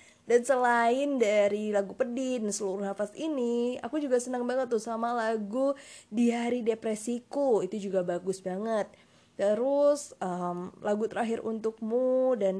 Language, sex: Indonesian, female